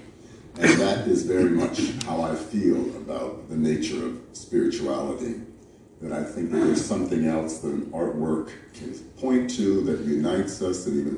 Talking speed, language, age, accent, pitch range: 165 wpm, Dutch, 50-69, American, 85-115 Hz